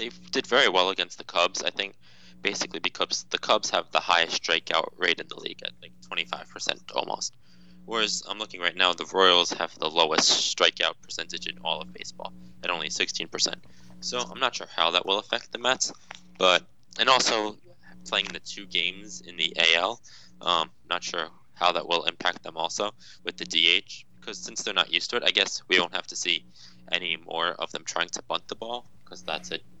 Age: 20-39